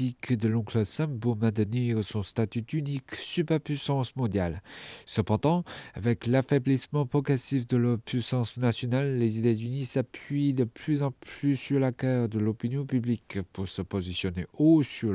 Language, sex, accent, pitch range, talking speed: French, male, French, 115-140 Hz, 145 wpm